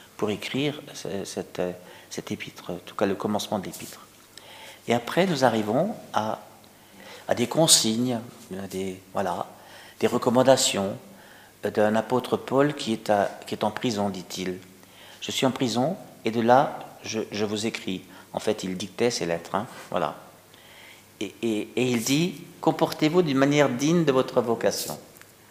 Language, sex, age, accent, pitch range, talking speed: French, male, 50-69, French, 95-125 Hz, 155 wpm